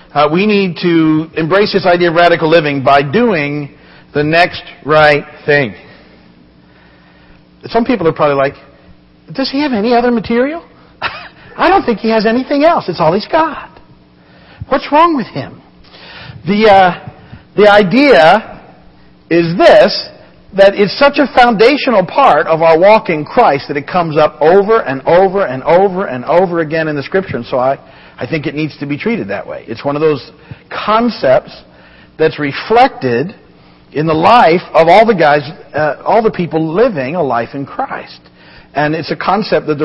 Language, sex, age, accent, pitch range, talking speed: English, male, 50-69, American, 140-195 Hz, 175 wpm